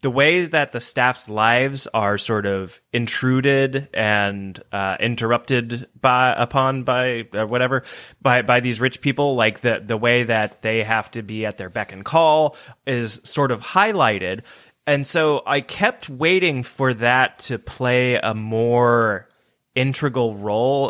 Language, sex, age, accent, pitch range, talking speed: English, male, 20-39, American, 105-130 Hz, 155 wpm